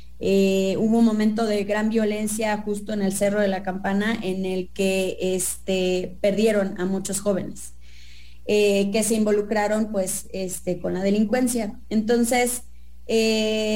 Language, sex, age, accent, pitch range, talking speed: English, female, 20-39, Mexican, 195-225 Hz, 145 wpm